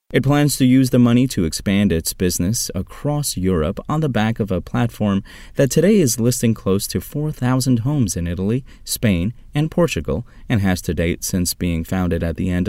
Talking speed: 195 wpm